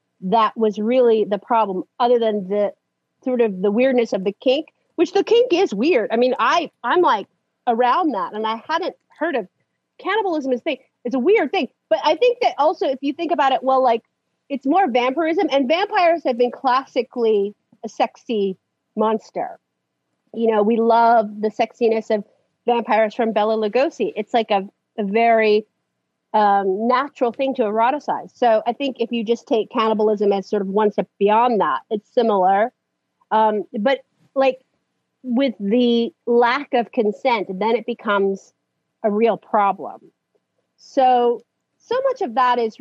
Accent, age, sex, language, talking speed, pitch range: American, 40-59, female, English, 170 wpm, 215-265 Hz